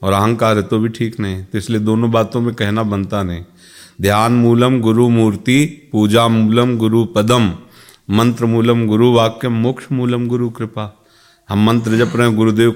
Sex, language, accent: male, Hindi, native